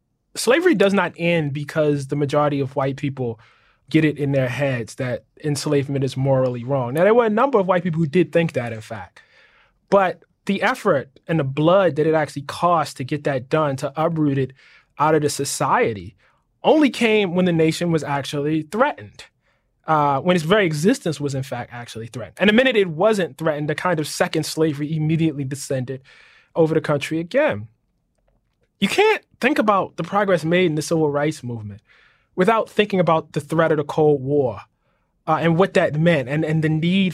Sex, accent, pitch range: male, American, 145-175 Hz